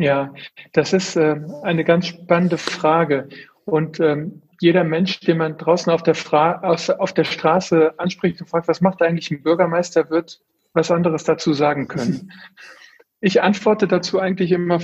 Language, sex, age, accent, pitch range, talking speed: German, male, 40-59, German, 155-175 Hz, 155 wpm